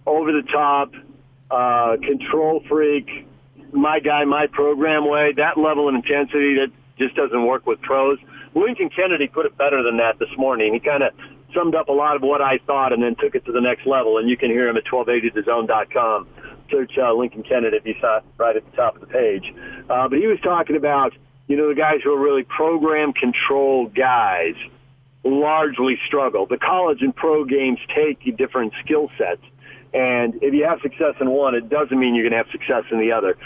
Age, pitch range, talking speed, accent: 50-69, 125-150 Hz, 205 wpm, American